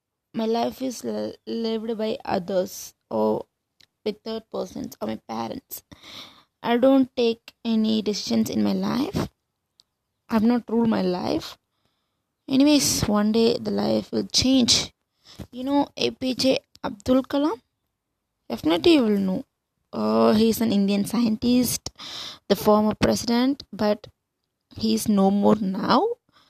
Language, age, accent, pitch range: English, 20-39, Indian, 205-255 Hz